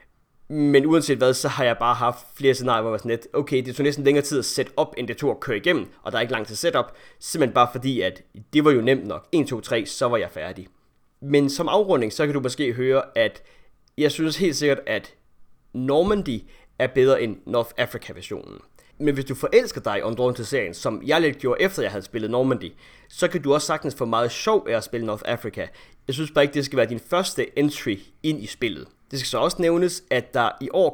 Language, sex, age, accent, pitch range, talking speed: Danish, male, 30-49, native, 120-155 Hz, 250 wpm